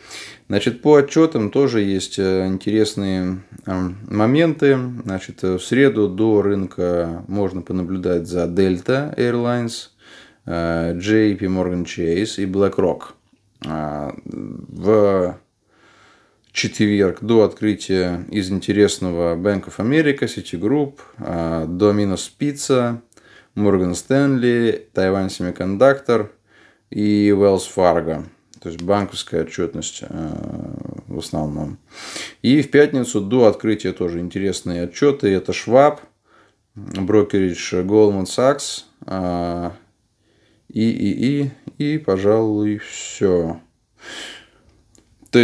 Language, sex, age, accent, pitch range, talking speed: Russian, male, 20-39, native, 90-110 Hz, 85 wpm